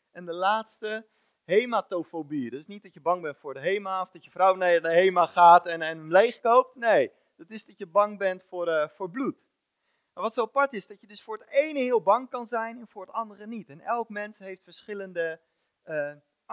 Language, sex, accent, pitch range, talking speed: Dutch, male, Dutch, 175-225 Hz, 230 wpm